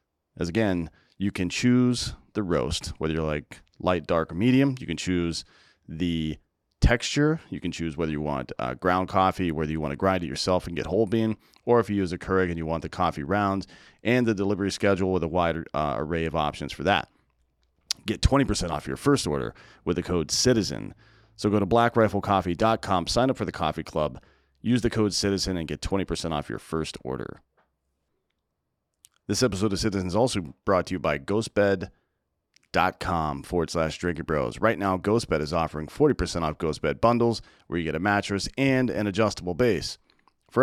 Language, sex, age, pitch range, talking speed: English, male, 30-49, 80-105 Hz, 190 wpm